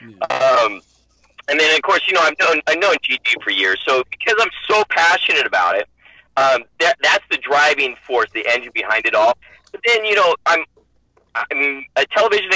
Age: 30-49